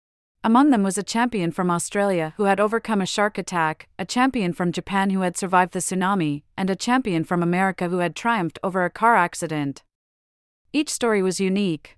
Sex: female